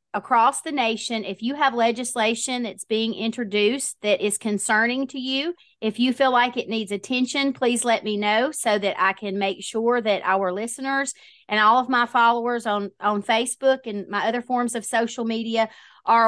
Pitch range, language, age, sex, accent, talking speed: 205-260 Hz, English, 30-49, female, American, 190 wpm